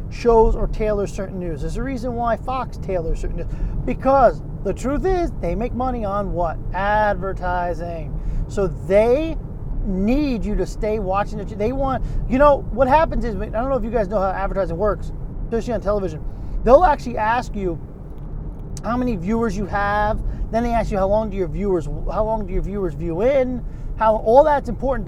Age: 30-49